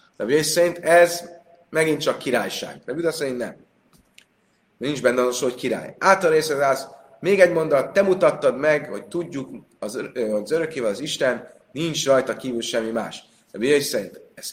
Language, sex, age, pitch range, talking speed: Hungarian, male, 30-49, 130-175 Hz, 155 wpm